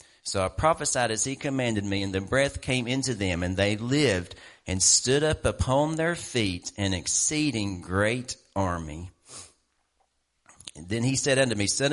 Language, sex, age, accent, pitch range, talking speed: English, male, 40-59, American, 95-125 Hz, 165 wpm